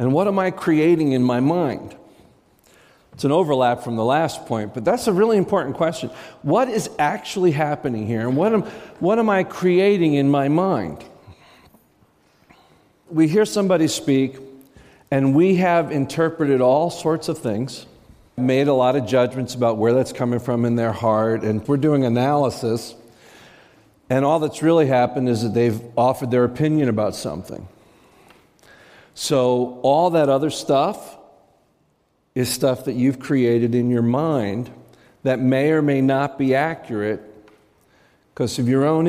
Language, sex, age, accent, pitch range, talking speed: English, male, 50-69, American, 120-160 Hz, 155 wpm